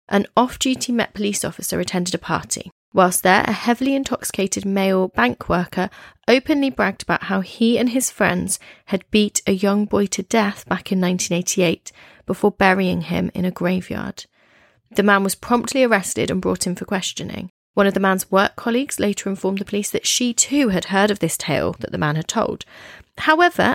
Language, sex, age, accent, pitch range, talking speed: English, female, 30-49, British, 185-230 Hz, 185 wpm